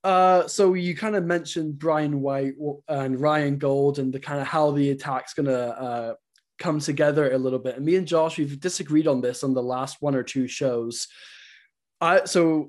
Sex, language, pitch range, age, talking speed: male, English, 135-160 Hz, 20-39, 195 wpm